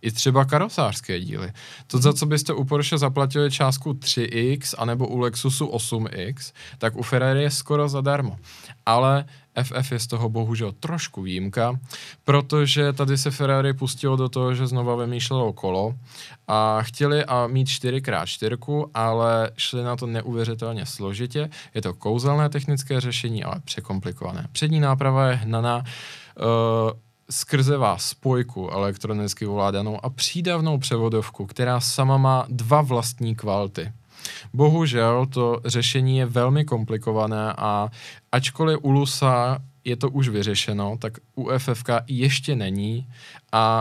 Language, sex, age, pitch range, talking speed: Czech, male, 20-39, 115-135 Hz, 130 wpm